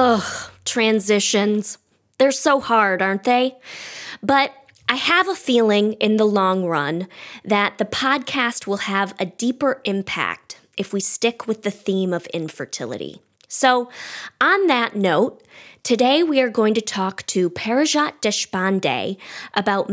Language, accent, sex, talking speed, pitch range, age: English, American, female, 140 wpm, 190-245 Hz, 20-39